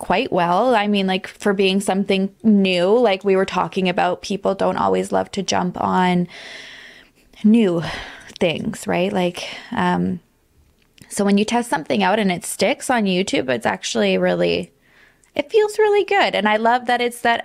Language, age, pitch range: English, 20-39, 180-220 Hz